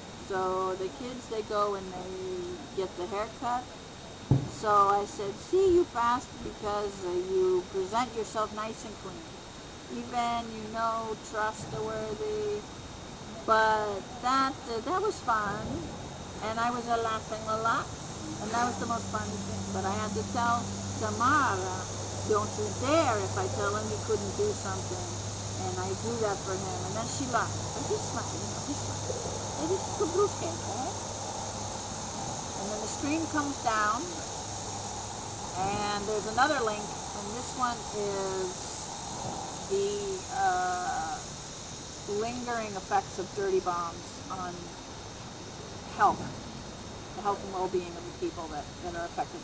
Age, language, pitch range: 50-69, English, 175-235 Hz